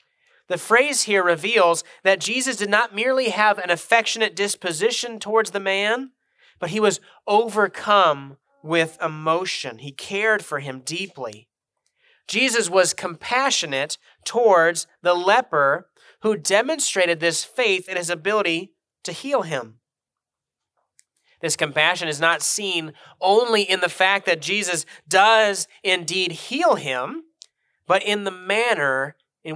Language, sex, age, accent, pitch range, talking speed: English, male, 30-49, American, 165-225 Hz, 130 wpm